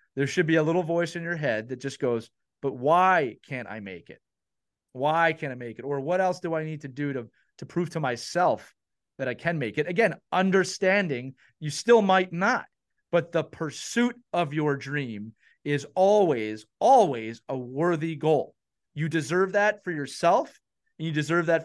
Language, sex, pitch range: English, male, 135-175 Hz